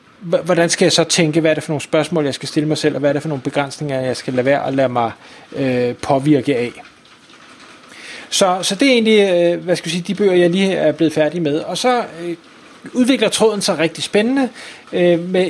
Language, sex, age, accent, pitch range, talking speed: Danish, male, 30-49, native, 155-200 Hz, 220 wpm